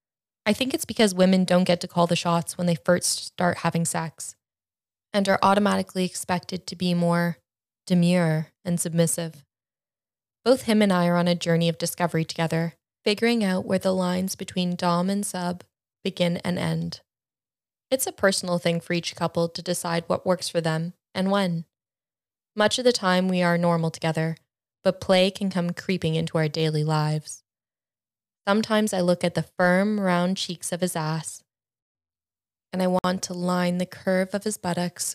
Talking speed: 175 wpm